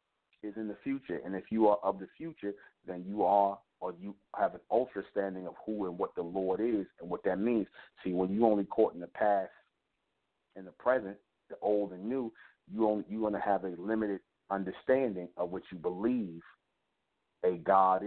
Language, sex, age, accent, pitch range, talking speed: English, male, 40-59, American, 95-110 Hz, 200 wpm